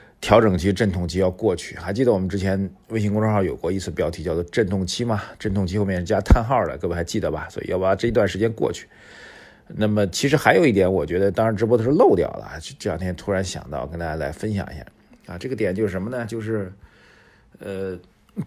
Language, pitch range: Chinese, 90-110 Hz